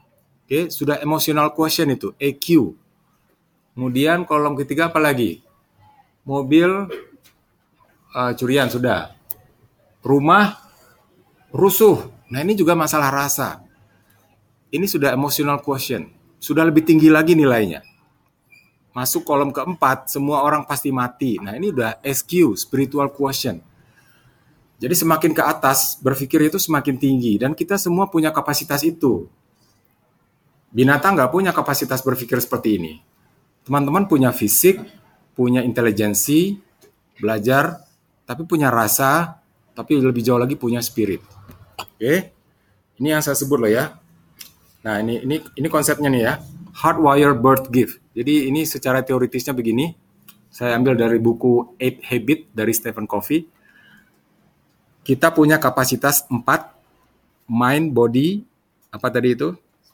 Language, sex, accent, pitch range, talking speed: Indonesian, male, native, 125-155 Hz, 120 wpm